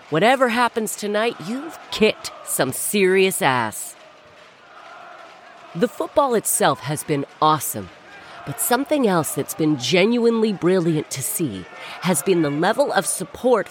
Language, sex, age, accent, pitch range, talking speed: English, female, 40-59, American, 155-245 Hz, 125 wpm